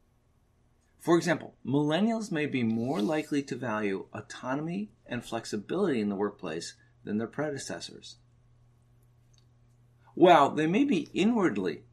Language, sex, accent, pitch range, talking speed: English, male, American, 120-140 Hz, 115 wpm